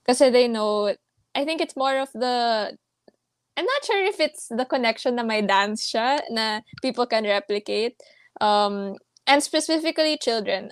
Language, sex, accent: Filipino, female, native